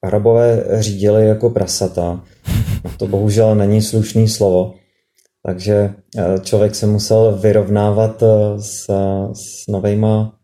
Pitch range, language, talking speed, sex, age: 95-110 Hz, Czech, 100 wpm, male, 30-49